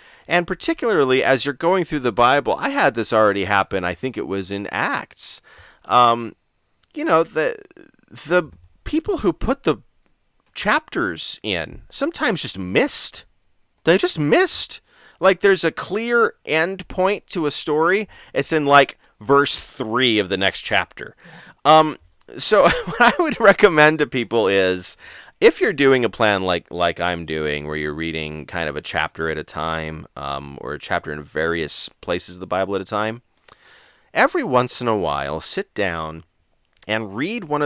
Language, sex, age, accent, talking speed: English, male, 30-49, American, 165 wpm